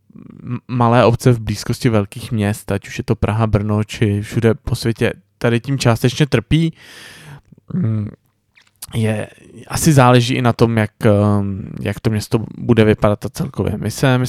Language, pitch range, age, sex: Czech, 105-125 Hz, 20-39, male